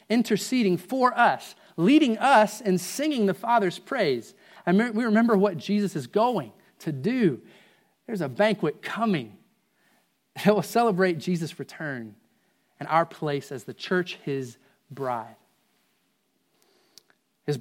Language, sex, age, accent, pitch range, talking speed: English, male, 30-49, American, 150-205 Hz, 125 wpm